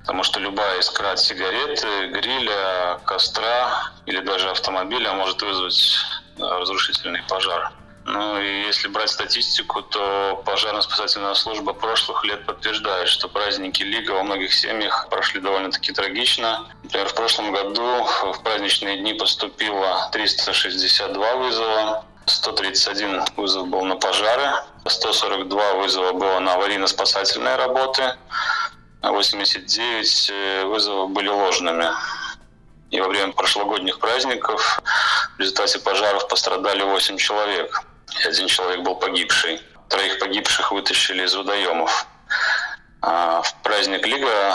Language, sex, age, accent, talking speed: Russian, male, 20-39, native, 110 wpm